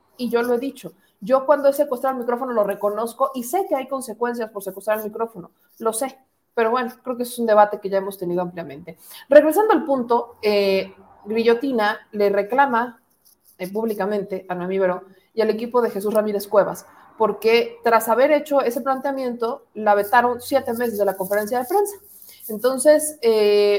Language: Spanish